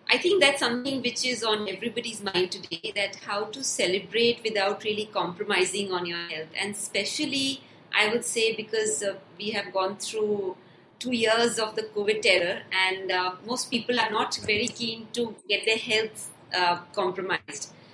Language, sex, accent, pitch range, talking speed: English, female, Indian, 195-250 Hz, 170 wpm